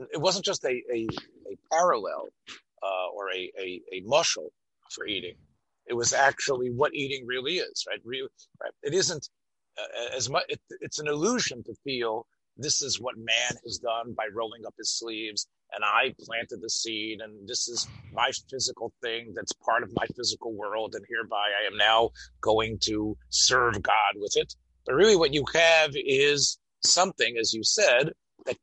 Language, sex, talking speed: English, male, 180 wpm